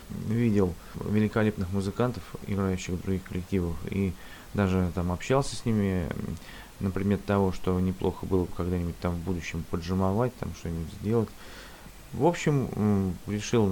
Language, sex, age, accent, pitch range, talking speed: Russian, male, 20-39, native, 90-105 Hz, 135 wpm